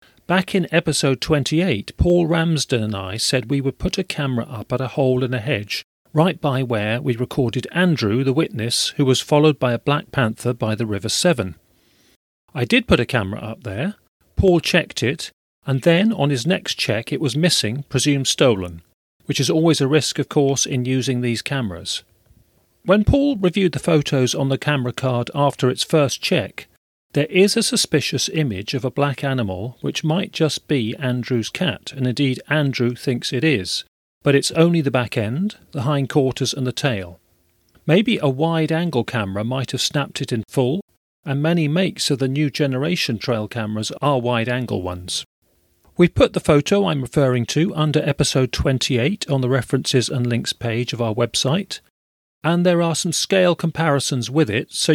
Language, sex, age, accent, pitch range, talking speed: English, male, 40-59, British, 120-155 Hz, 180 wpm